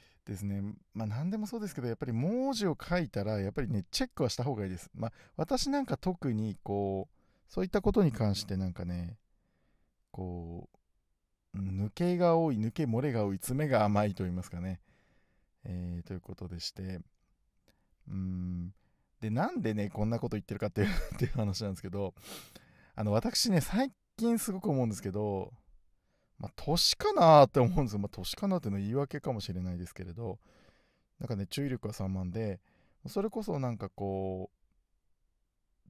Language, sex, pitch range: Japanese, male, 95-140 Hz